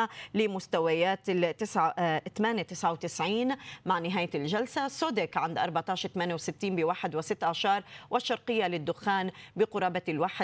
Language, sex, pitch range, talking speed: Arabic, female, 165-200 Hz, 80 wpm